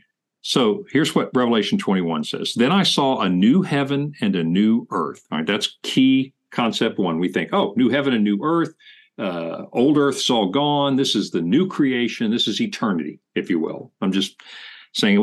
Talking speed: 195 wpm